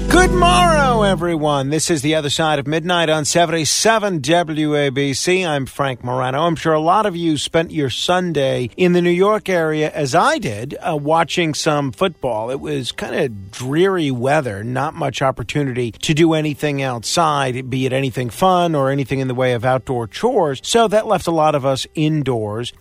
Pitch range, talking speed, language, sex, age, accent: 130-170 Hz, 185 wpm, English, male, 50-69, American